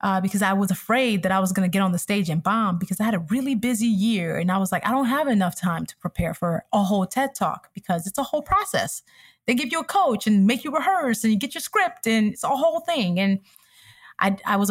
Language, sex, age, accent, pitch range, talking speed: English, female, 20-39, American, 190-240 Hz, 275 wpm